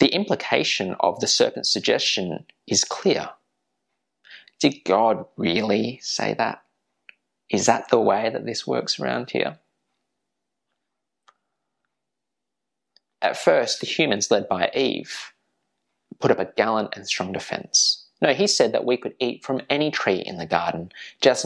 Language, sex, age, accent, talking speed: English, male, 20-39, Australian, 140 wpm